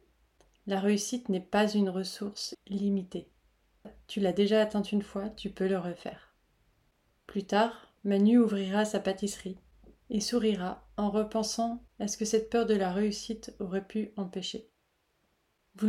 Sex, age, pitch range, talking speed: female, 30-49, 195-225 Hz, 145 wpm